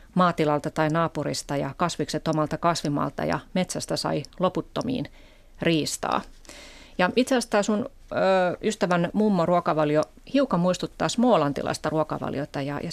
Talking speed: 110 wpm